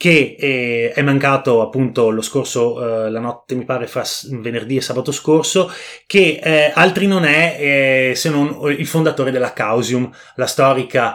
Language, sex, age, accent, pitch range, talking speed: Italian, male, 30-49, native, 120-145 Hz, 160 wpm